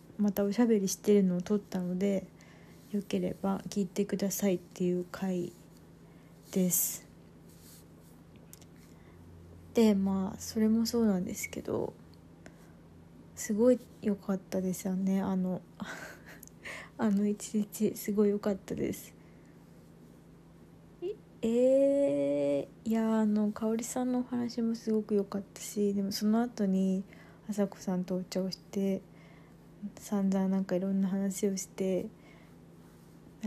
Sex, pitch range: female, 185-215 Hz